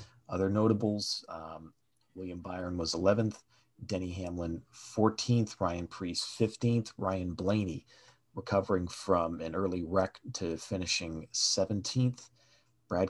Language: English